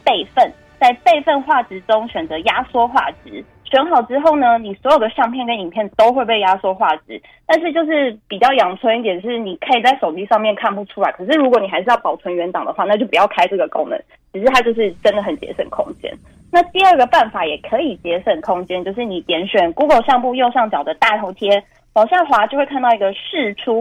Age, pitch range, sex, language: 20-39, 195-275 Hz, female, Chinese